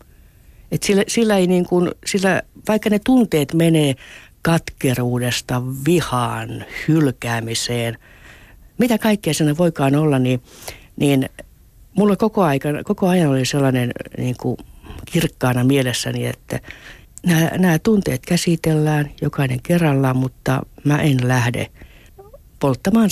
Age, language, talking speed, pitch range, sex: 60-79, Finnish, 110 wpm, 125-175 Hz, female